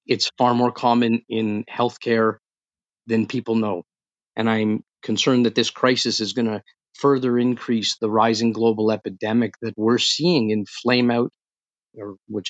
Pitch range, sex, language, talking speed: 110-130 Hz, male, English, 150 wpm